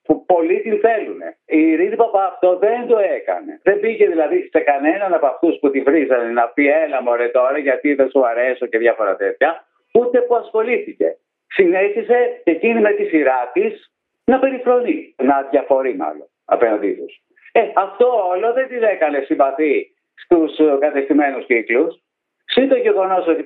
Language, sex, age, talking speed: Greek, male, 50-69, 160 wpm